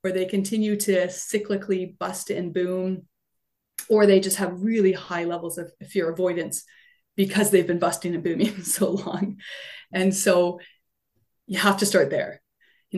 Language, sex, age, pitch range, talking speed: English, female, 20-39, 180-205 Hz, 155 wpm